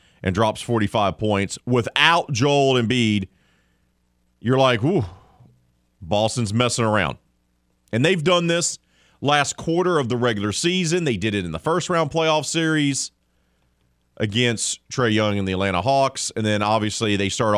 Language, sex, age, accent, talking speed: English, male, 40-59, American, 145 wpm